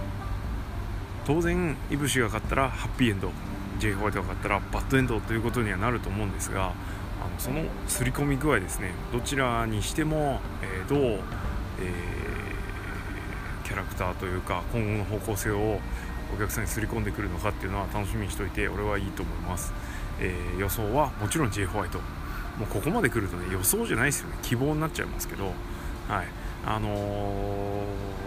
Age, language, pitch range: 20-39, Japanese, 95-115 Hz